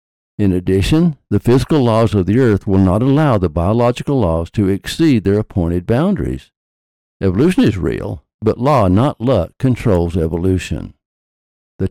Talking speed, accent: 145 wpm, American